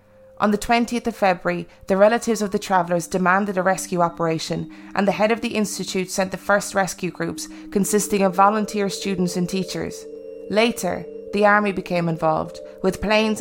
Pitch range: 175-205 Hz